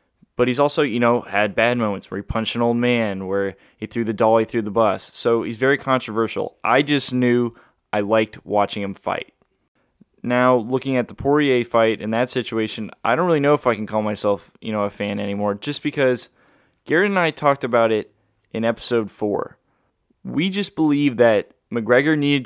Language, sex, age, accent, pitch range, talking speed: English, male, 20-39, American, 110-125 Hz, 200 wpm